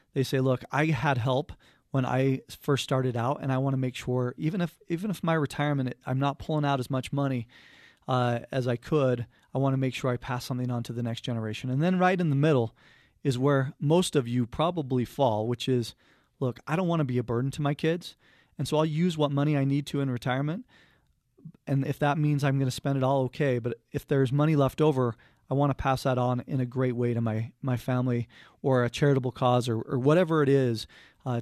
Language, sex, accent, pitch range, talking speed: English, male, American, 125-145 Hz, 240 wpm